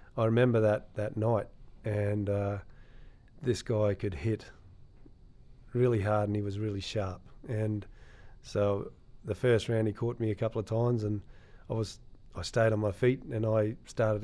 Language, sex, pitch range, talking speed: English, male, 100-115 Hz, 175 wpm